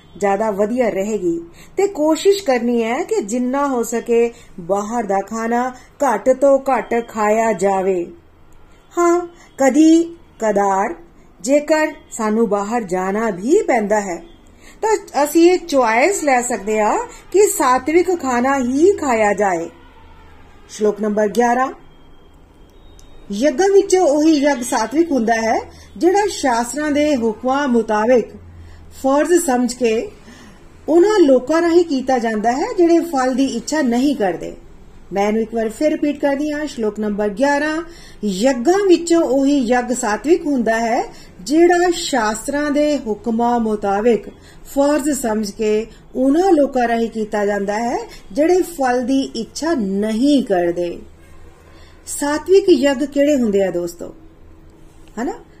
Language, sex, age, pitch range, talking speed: Punjabi, female, 40-59, 210-295 Hz, 100 wpm